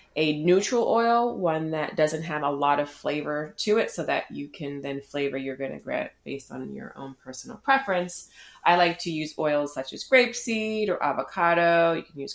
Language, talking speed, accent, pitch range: English, 195 wpm, American, 145-180 Hz